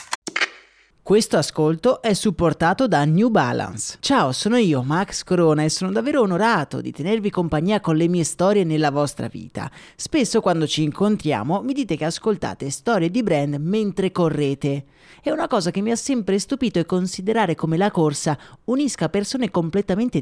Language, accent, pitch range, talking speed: Italian, native, 160-230 Hz, 165 wpm